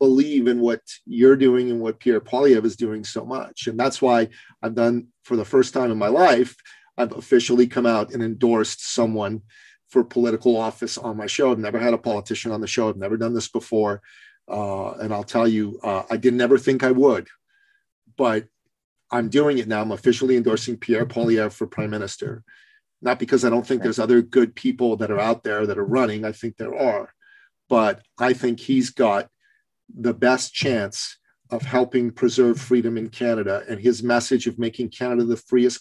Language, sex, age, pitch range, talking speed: English, male, 40-59, 110-125 Hz, 200 wpm